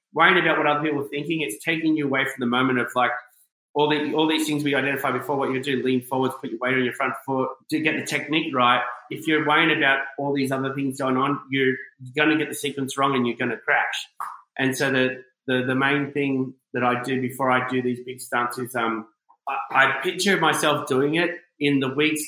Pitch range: 130-150 Hz